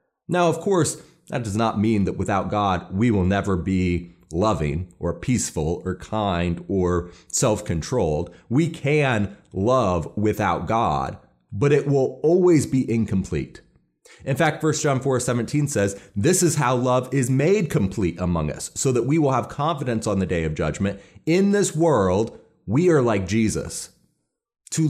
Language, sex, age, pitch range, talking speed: English, male, 30-49, 105-160 Hz, 160 wpm